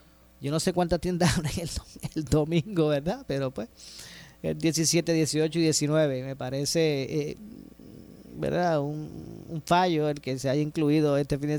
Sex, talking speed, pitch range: male, 165 wpm, 135-170 Hz